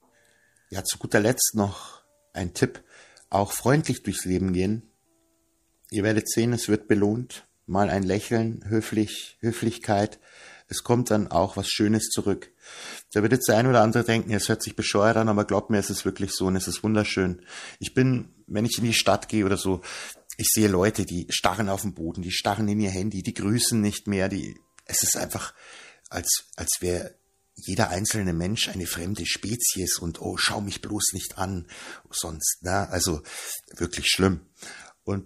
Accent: German